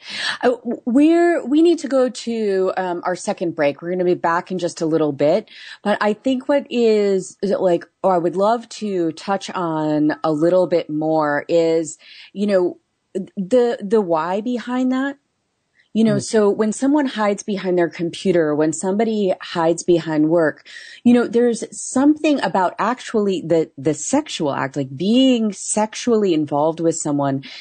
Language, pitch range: English, 155-210 Hz